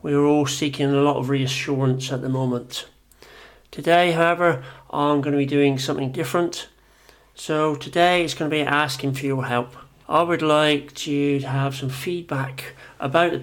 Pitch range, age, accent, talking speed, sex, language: 135-150 Hz, 40-59, British, 180 wpm, male, English